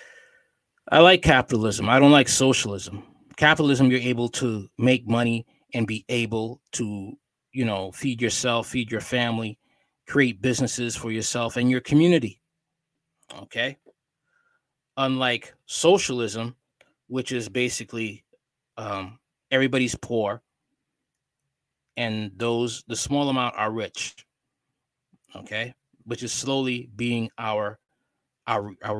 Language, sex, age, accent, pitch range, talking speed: English, male, 20-39, American, 115-135 Hz, 115 wpm